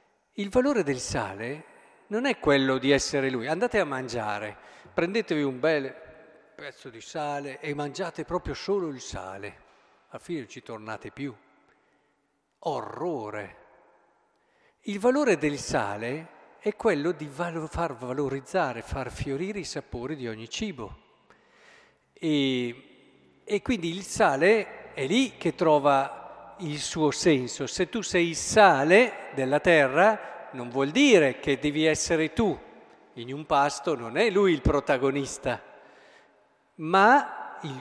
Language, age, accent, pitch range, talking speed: Italian, 50-69, native, 135-195 Hz, 135 wpm